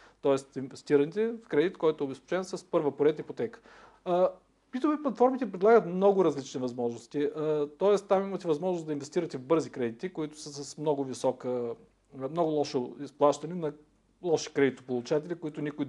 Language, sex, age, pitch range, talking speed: Bulgarian, male, 50-69, 140-190 Hz, 145 wpm